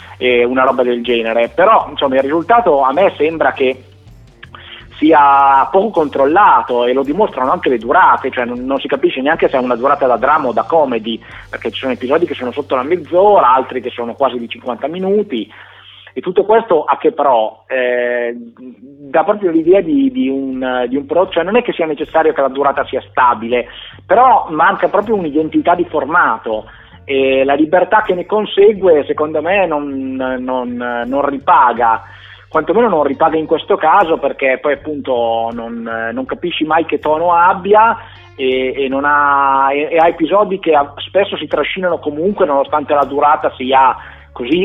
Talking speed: 170 wpm